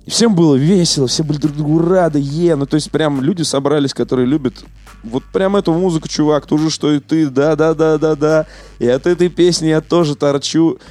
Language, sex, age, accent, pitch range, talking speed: Russian, male, 20-39, native, 95-145 Hz, 195 wpm